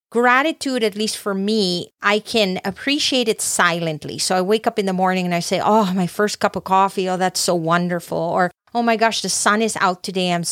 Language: English